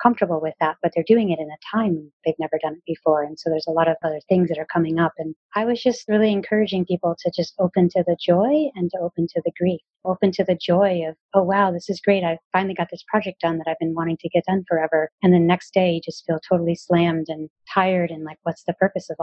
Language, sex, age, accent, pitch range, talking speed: English, female, 30-49, American, 165-190 Hz, 270 wpm